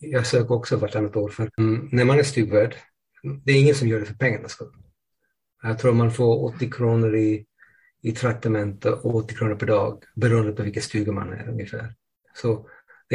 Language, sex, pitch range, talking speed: Swedish, male, 110-125 Hz, 185 wpm